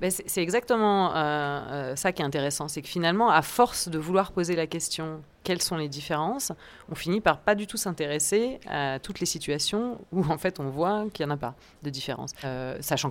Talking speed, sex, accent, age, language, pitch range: 210 wpm, female, French, 30-49, French, 145-185 Hz